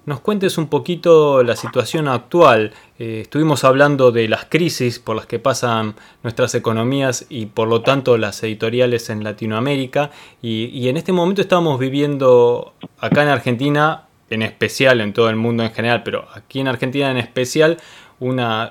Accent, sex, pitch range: Argentinian, male, 115-145 Hz